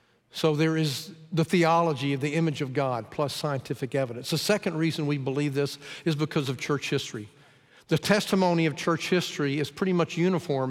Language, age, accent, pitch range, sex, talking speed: English, 50-69, American, 145-185 Hz, male, 185 wpm